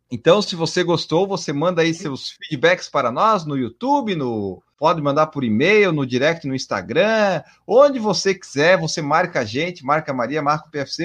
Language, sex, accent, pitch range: Portuguese, male, Brazilian, 155-200 Hz